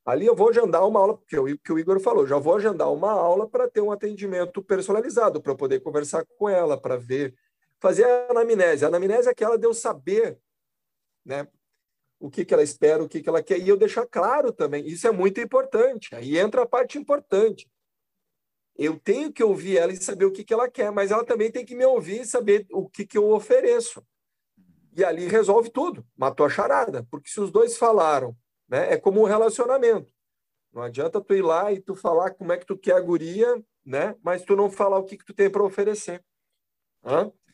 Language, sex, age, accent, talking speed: Portuguese, male, 50-69, Brazilian, 215 wpm